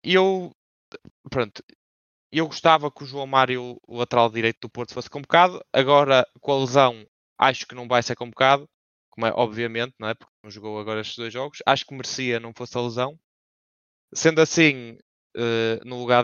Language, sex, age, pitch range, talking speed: English, male, 20-39, 120-145 Hz, 175 wpm